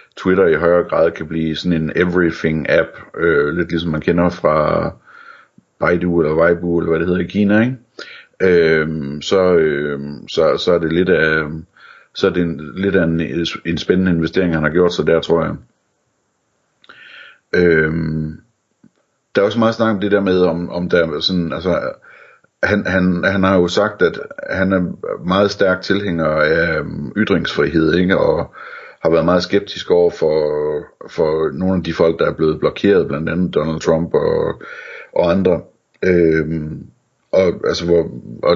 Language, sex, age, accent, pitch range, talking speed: Danish, male, 60-79, native, 80-105 Hz, 175 wpm